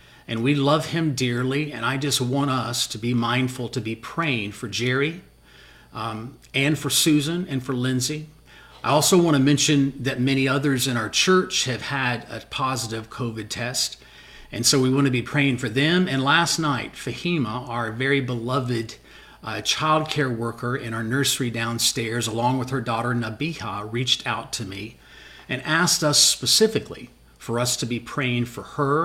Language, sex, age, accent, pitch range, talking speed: English, male, 40-59, American, 115-140 Hz, 175 wpm